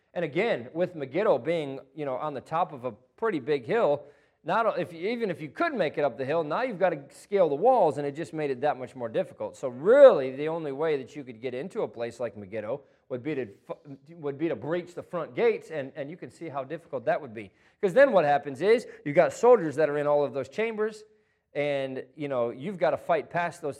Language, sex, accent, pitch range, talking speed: English, male, American, 130-170 Hz, 255 wpm